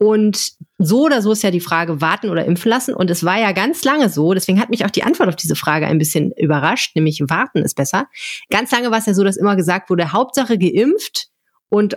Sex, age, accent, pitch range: female, 30-49, German, 165-215 Hz